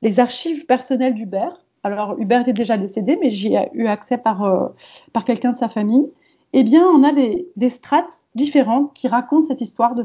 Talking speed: 195 wpm